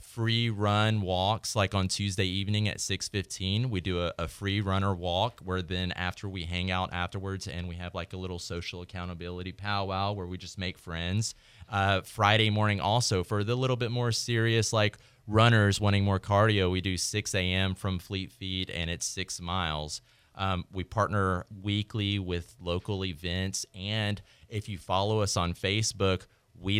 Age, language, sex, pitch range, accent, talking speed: 30-49, English, male, 90-110 Hz, American, 175 wpm